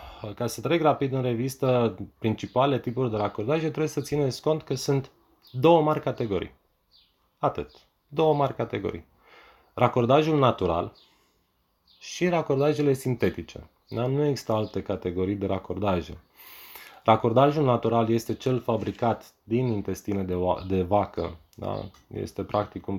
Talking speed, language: 120 wpm, Romanian